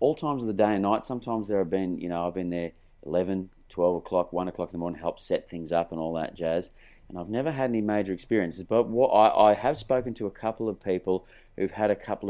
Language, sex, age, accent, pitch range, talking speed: English, male, 30-49, Australian, 85-110 Hz, 265 wpm